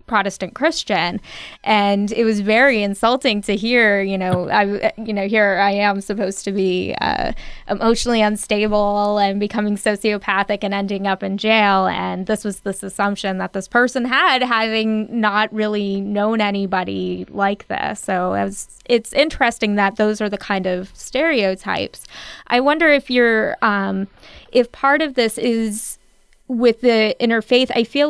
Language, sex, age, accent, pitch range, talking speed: English, female, 20-39, American, 200-230 Hz, 155 wpm